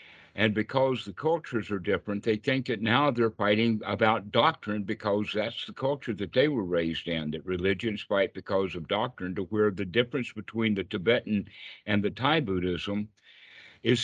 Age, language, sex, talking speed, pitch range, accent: 60-79, English, male, 175 wpm, 100-120 Hz, American